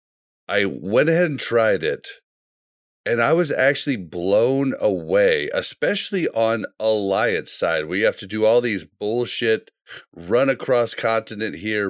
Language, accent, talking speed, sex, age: English, American, 125 wpm, male, 30-49